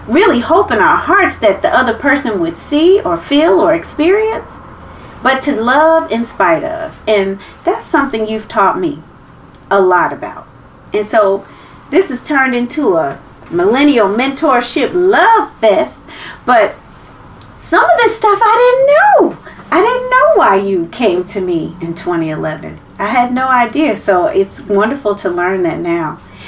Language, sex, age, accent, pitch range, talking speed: English, female, 40-59, American, 215-330 Hz, 160 wpm